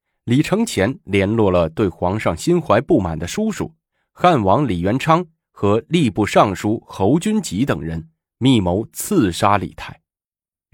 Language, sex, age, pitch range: Chinese, male, 20-39, 85-120 Hz